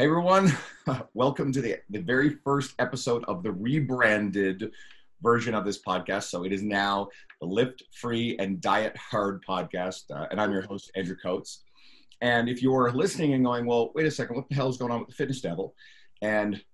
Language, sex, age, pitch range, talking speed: English, male, 40-59, 100-130 Hz, 195 wpm